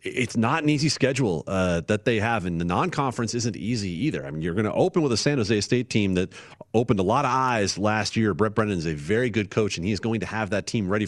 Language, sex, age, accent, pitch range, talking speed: English, male, 40-59, American, 100-125 Hz, 275 wpm